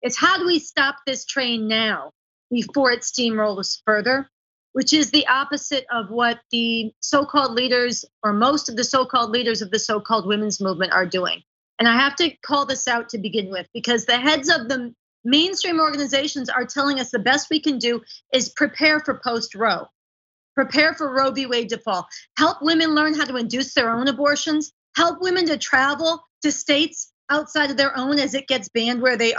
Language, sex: English, female